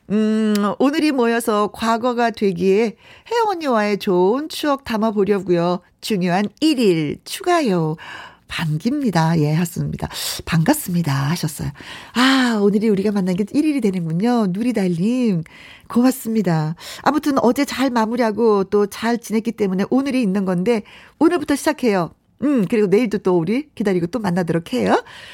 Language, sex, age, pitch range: Korean, female, 40-59, 205-285 Hz